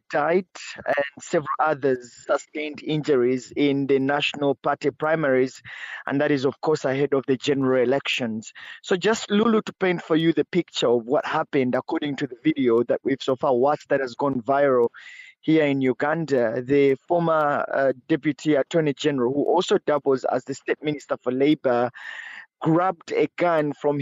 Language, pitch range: English, 135-160 Hz